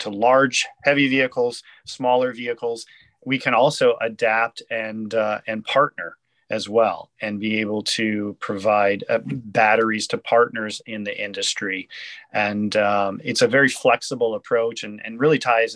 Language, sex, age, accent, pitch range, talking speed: English, male, 30-49, American, 105-135 Hz, 150 wpm